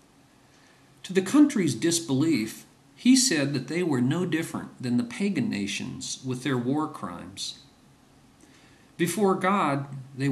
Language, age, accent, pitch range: English, 50-69, American, 125-165 Hz